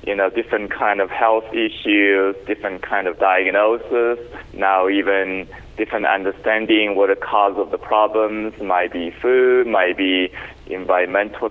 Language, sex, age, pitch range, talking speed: English, male, 20-39, 95-110 Hz, 140 wpm